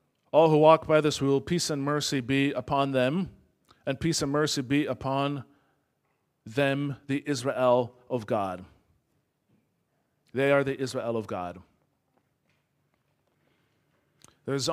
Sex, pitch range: male, 140-195 Hz